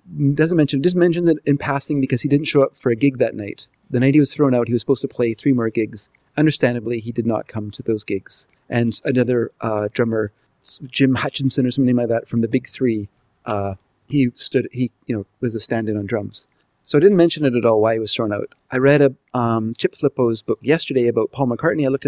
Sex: male